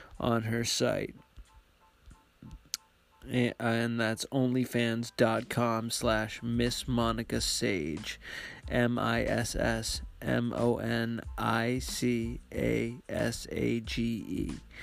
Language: English